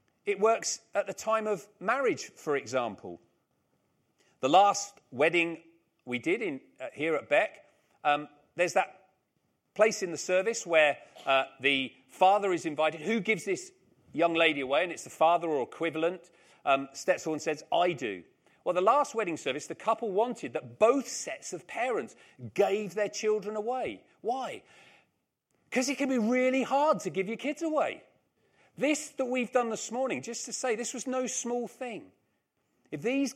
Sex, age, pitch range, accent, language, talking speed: male, 40-59, 165-240 Hz, British, English, 165 wpm